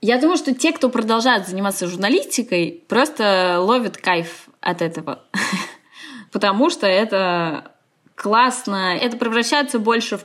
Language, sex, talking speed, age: Russian, female, 125 wpm, 20-39